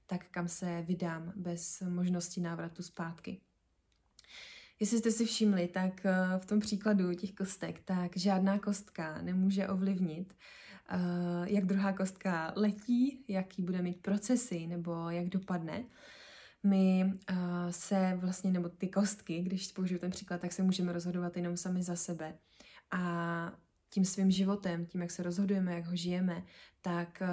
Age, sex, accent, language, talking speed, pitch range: 20-39, female, native, Czech, 140 wpm, 175-195 Hz